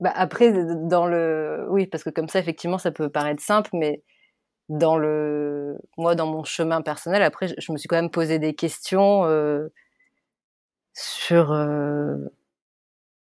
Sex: female